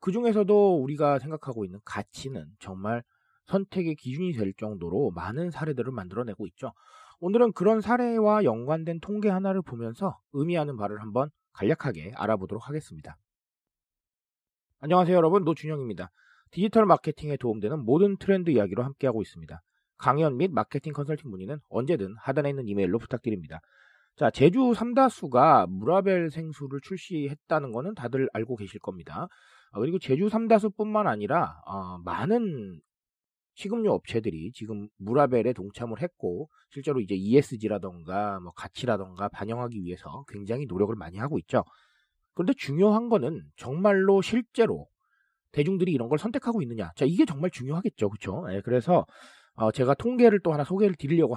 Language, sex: Korean, male